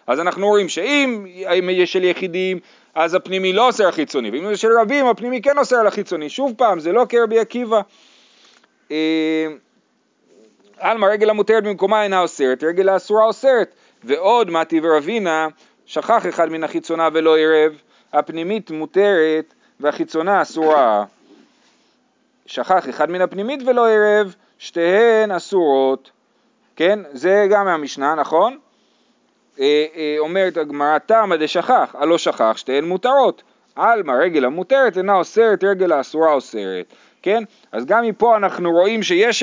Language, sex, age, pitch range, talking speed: Hebrew, male, 40-59, 160-225 Hz, 135 wpm